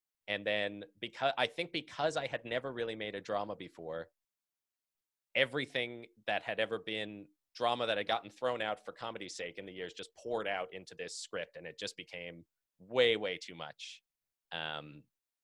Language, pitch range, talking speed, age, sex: English, 85-120 Hz, 180 wpm, 30-49, male